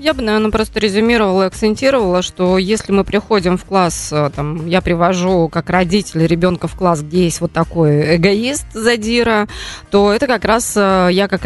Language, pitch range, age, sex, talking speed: Russian, 175-210 Hz, 20-39, female, 170 wpm